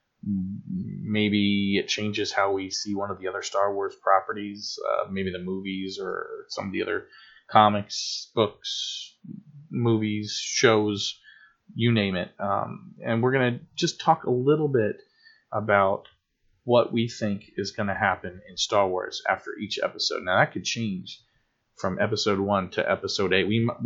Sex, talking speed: male, 160 wpm